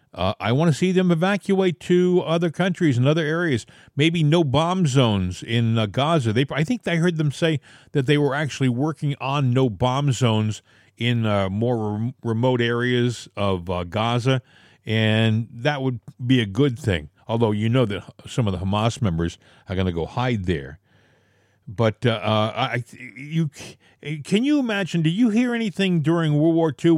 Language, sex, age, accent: English, male, 50-69, American